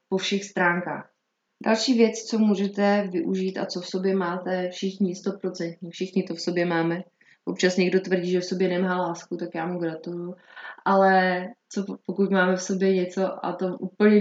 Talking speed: 175 wpm